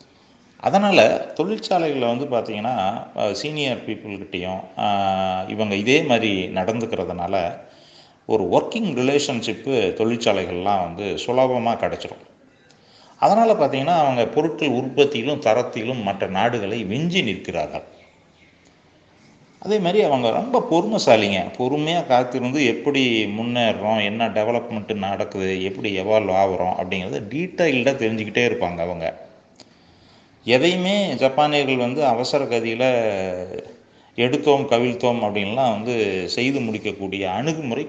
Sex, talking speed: male, 90 wpm